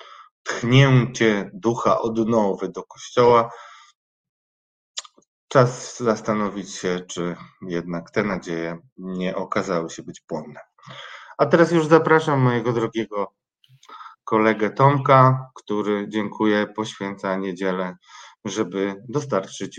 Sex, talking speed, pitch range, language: male, 95 wpm, 105-135 Hz, Polish